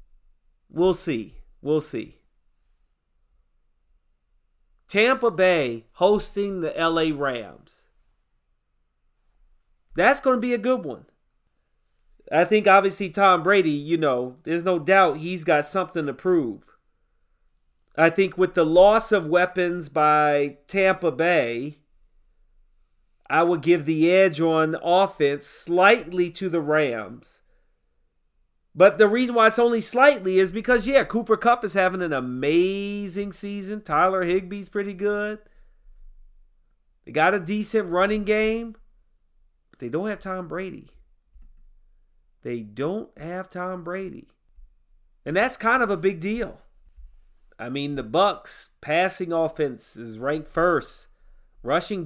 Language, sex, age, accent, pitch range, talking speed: English, male, 40-59, American, 145-200 Hz, 125 wpm